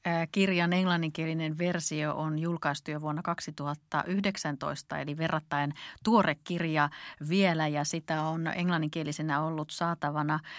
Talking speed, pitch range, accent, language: 110 wpm, 155-185 Hz, native, Finnish